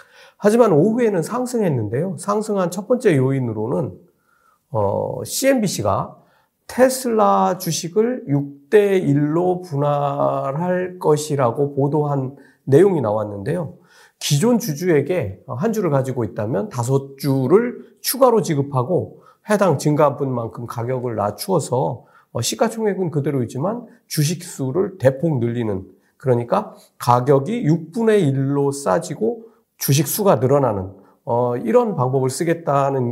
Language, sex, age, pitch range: Korean, male, 40-59, 130-200 Hz